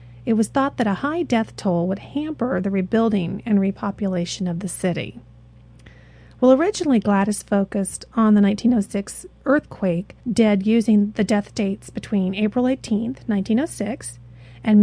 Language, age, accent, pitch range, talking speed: English, 40-59, American, 180-235 Hz, 140 wpm